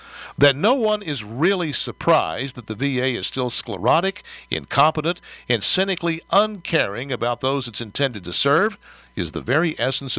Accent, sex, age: American, male, 60-79